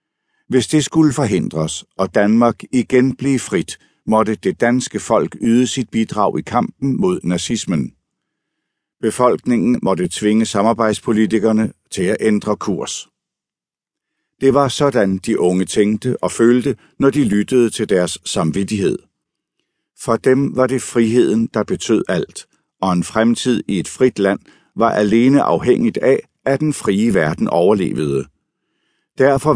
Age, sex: 60-79, male